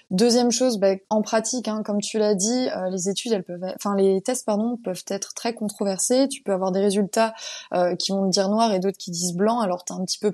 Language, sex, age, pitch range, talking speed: French, female, 20-39, 200-240 Hz, 260 wpm